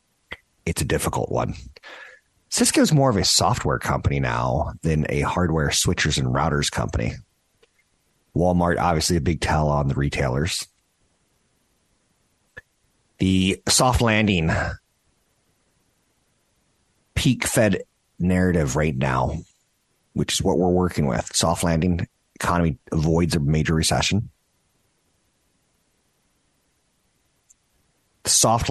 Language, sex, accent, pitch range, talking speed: English, male, American, 80-95 Hz, 100 wpm